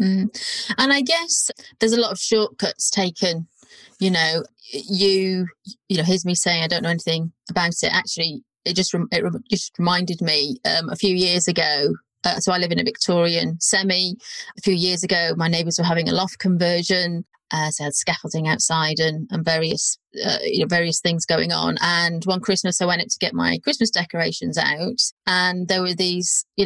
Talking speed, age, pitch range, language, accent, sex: 195 wpm, 30-49, 170-210 Hz, English, British, female